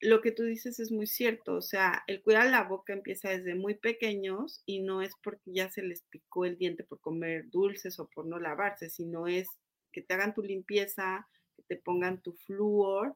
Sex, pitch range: female, 180-215 Hz